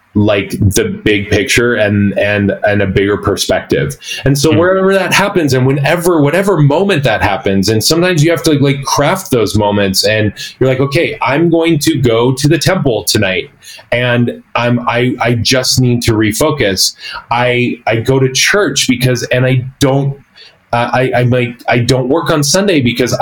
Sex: male